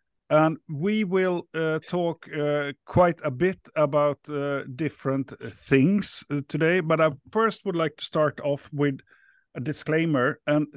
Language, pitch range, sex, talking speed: Swedish, 140-170 Hz, male, 145 wpm